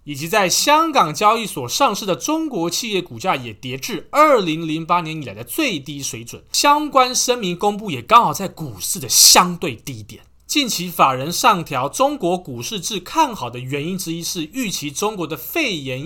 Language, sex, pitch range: Chinese, male, 140-210 Hz